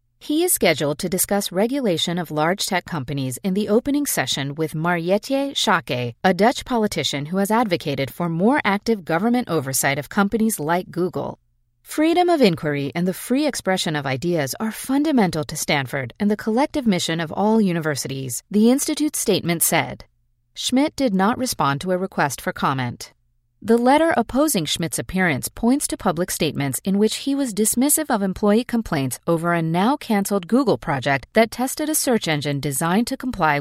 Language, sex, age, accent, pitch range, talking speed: English, female, 40-59, American, 150-230 Hz, 170 wpm